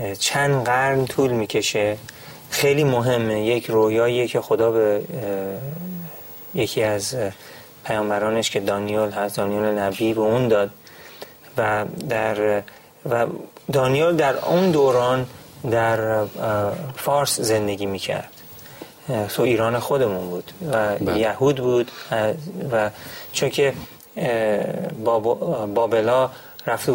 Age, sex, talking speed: 30-49, male, 100 wpm